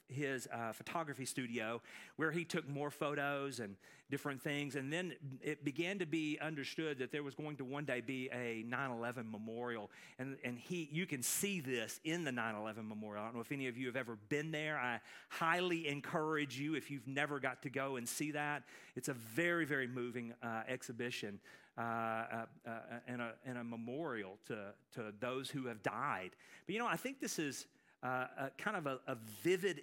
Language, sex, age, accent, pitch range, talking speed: English, male, 40-59, American, 125-160 Hz, 200 wpm